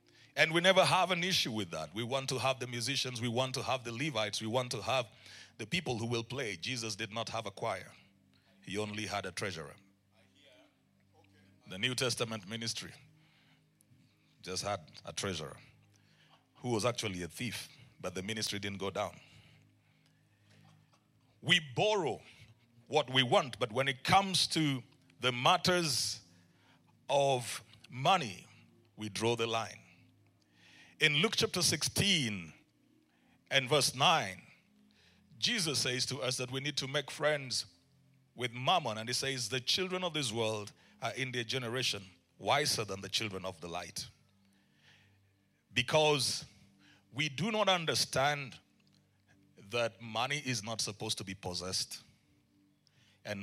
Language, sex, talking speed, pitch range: English, male, 145 wpm, 100-140 Hz